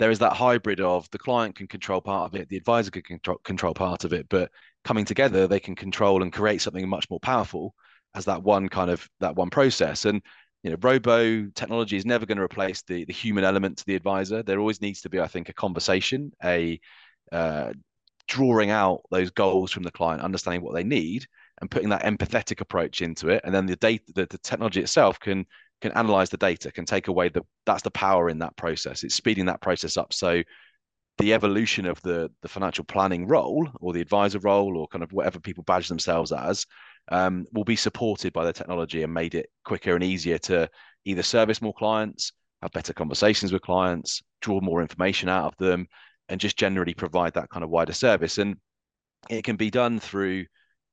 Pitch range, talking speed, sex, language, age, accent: 90-105 Hz, 210 wpm, male, English, 30-49, British